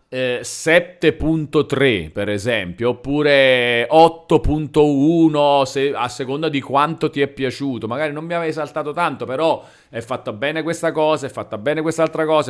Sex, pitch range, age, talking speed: male, 125-155 Hz, 40-59, 135 wpm